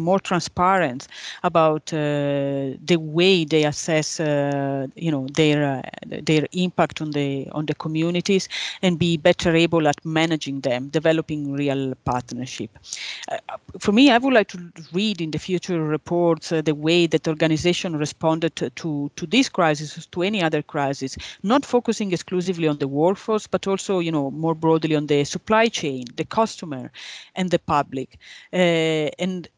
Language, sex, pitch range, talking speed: English, female, 150-180 Hz, 160 wpm